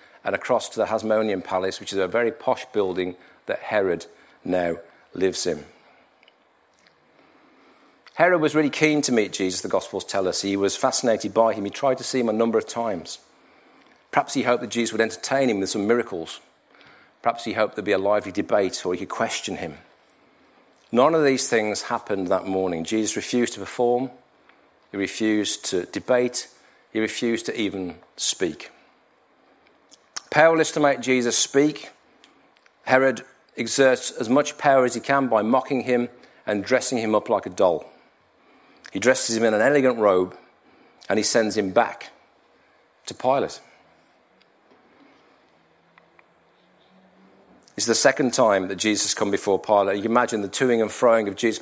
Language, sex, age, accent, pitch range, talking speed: English, male, 40-59, British, 100-125 Hz, 165 wpm